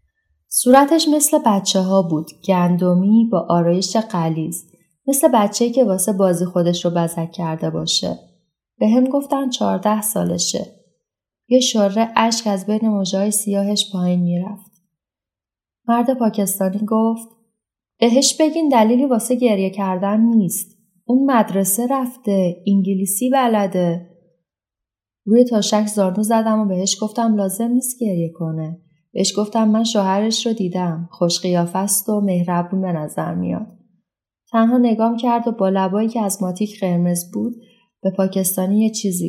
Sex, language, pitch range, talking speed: female, Persian, 175-225 Hz, 135 wpm